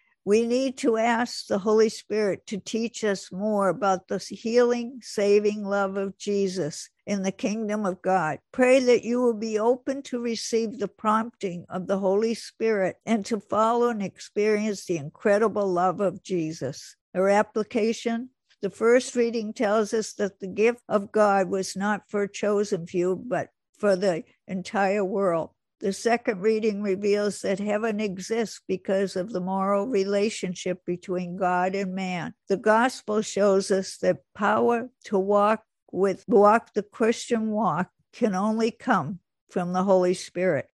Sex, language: female, English